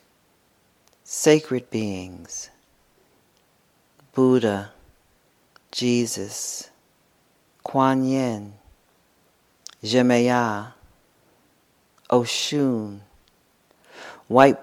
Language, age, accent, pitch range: English, 40-59, American, 105-140 Hz